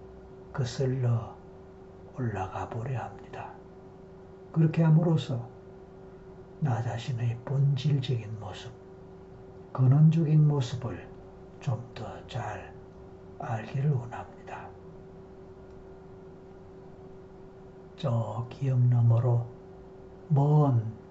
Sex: male